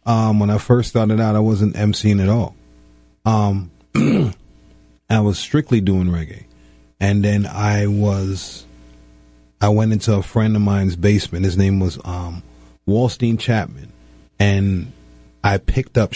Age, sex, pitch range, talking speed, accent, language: 30-49, male, 85-105 Hz, 145 wpm, American, English